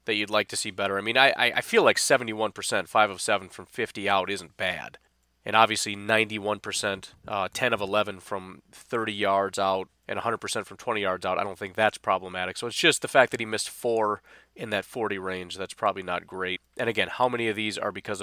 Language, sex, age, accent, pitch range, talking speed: English, male, 30-49, American, 95-115 Hz, 225 wpm